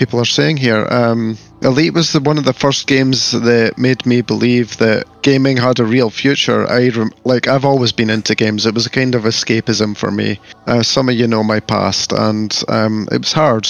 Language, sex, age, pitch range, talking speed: English, male, 30-49, 115-135 Hz, 225 wpm